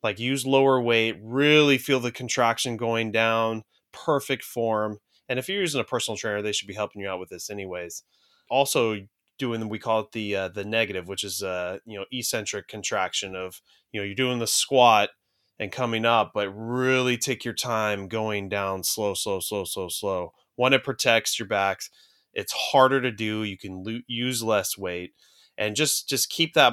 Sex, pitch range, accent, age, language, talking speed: male, 105-125 Hz, American, 20-39, English, 195 wpm